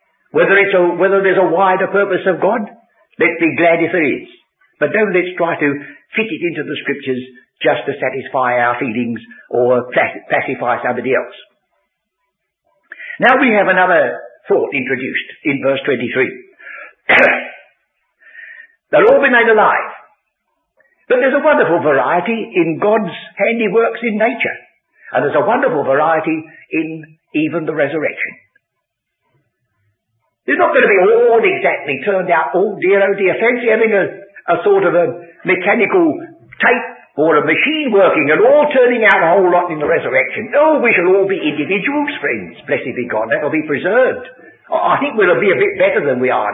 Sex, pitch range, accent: male, 165-270 Hz, British